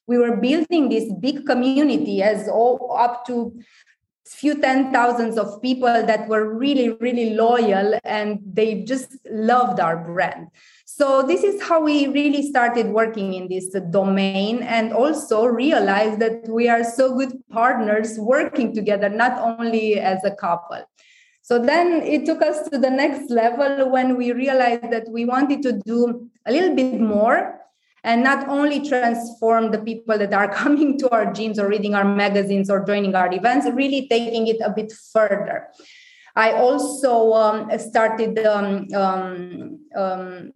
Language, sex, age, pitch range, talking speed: English, female, 20-39, 215-270 Hz, 160 wpm